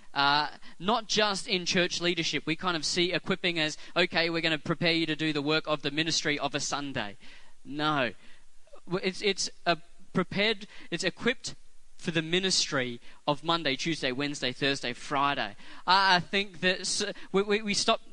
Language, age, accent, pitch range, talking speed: English, 20-39, Australian, 155-190 Hz, 170 wpm